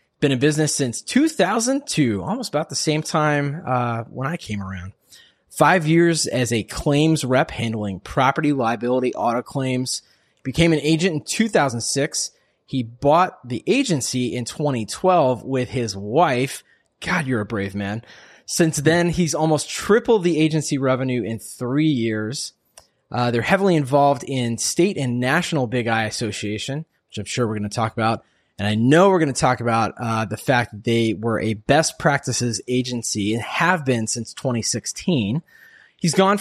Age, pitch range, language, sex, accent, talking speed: 20-39, 115-160 Hz, English, male, American, 165 wpm